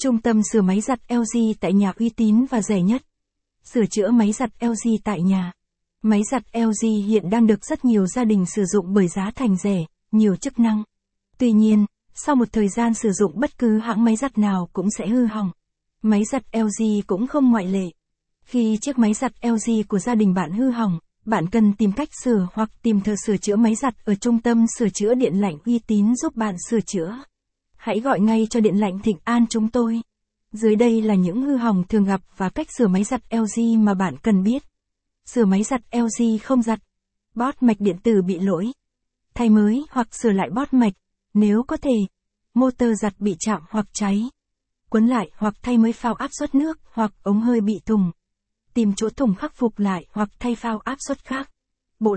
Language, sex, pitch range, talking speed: Vietnamese, female, 205-235 Hz, 210 wpm